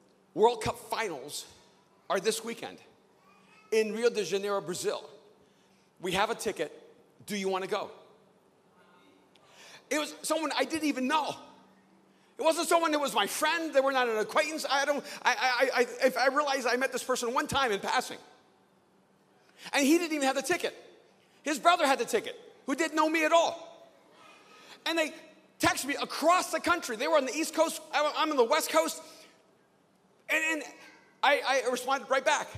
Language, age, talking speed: English, 40-59, 180 wpm